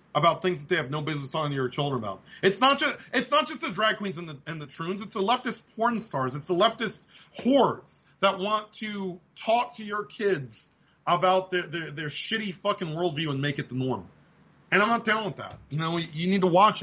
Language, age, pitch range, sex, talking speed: English, 30-49, 145-205 Hz, male, 235 wpm